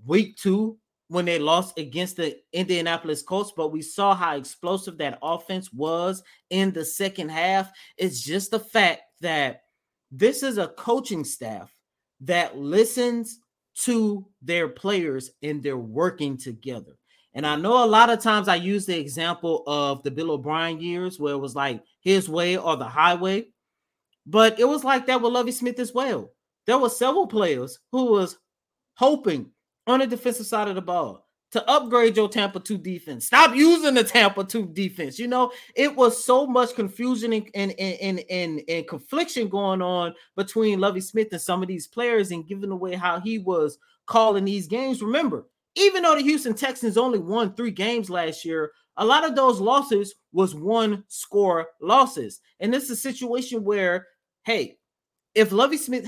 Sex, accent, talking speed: male, American, 175 wpm